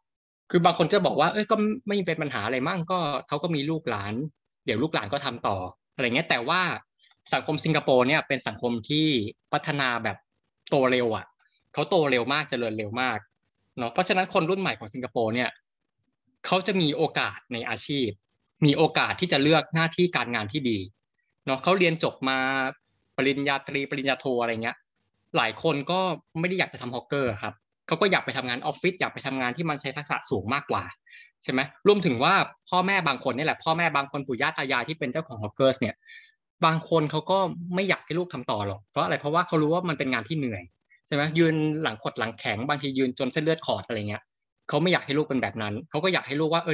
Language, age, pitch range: Thai, 20-39, 125-165 Hz